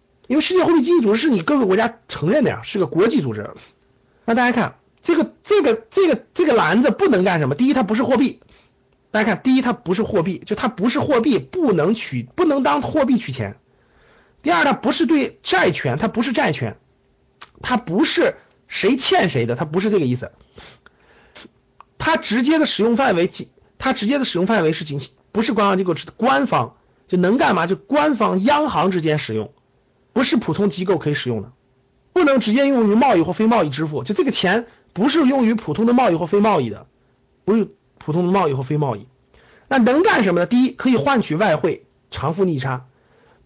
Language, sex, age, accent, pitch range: Chinese, male, 50-69, native, 160-255 Hz